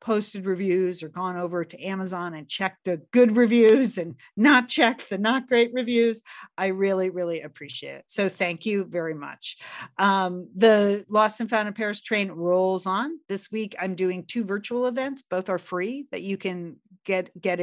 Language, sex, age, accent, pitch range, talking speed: English, female, 40-59, American, 175-215 Hz, 185 wpm